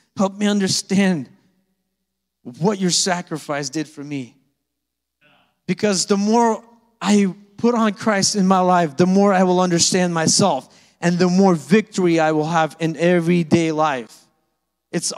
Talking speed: 140 wpm